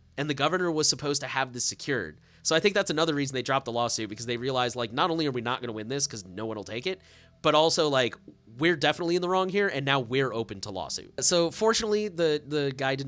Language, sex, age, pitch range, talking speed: English, male, 30-49, 110-155 Hz, 270 wpm